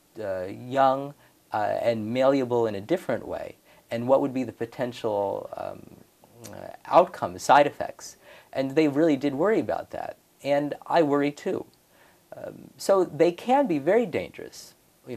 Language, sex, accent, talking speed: English, male, American, 155 wpm